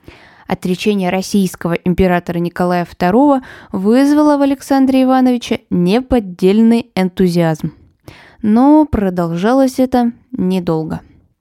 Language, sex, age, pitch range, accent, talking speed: Russian, female, 20-39, 180-240 Hz, native, 80 wpm